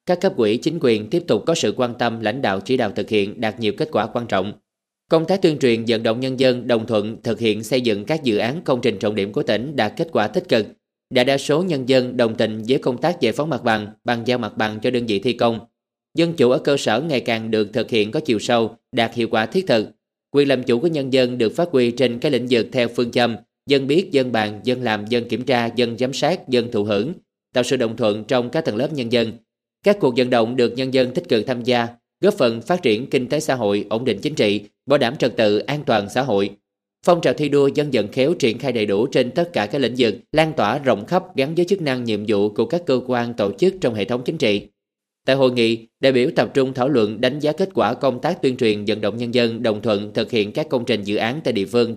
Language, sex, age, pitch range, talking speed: Vietnamese, male, 20-39, 110-135 Hz, 270 wpm